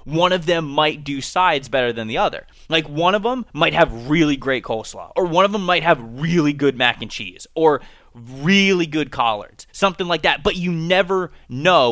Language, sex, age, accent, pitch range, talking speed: English, male, 20-39, American, 130-175 Hz, 205 wpm